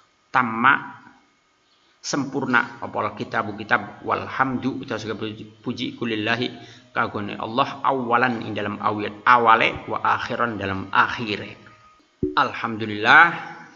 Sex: male